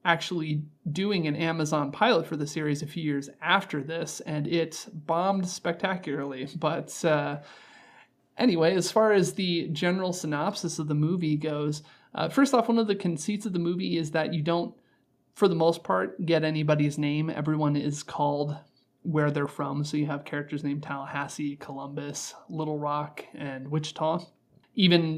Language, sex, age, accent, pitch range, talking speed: English, male, 30-49, American, 145-170 Hz, 165 wpm